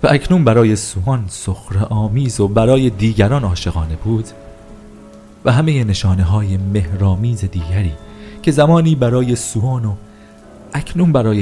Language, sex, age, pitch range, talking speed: Persian, male, 40-59, 85-110 Hz, 125 wpm